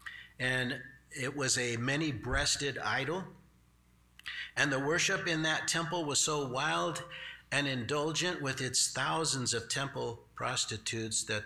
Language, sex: English, male